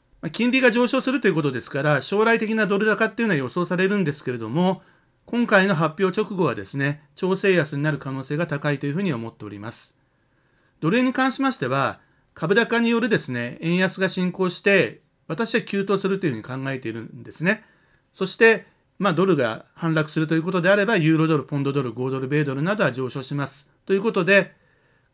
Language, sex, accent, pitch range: Japanese, male, native, 135-195 Hz